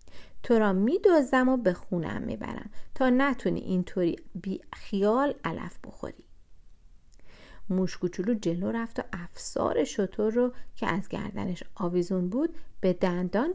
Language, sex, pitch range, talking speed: Persian, female, 165-225 Hz, 120 wpm